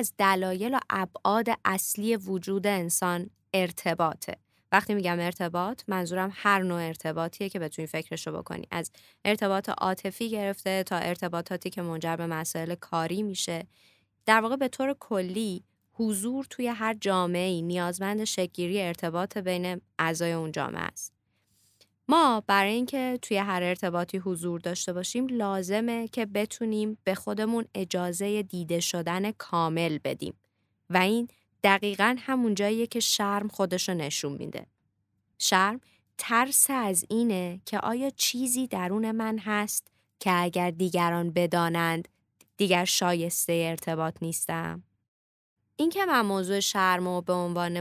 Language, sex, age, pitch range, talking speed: Persian, female, 20-39, 170-210 Hz, 130 wpm